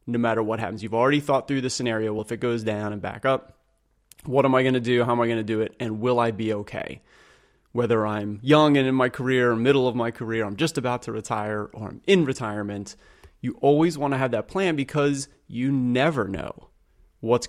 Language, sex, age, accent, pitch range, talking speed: English, male, 30-49, American, 115-145 Hz, 235 wpm